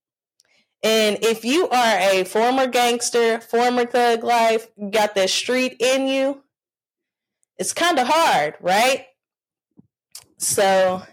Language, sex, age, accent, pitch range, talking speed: English, female, 20-39, American, 205-265 Hz, 115 wpm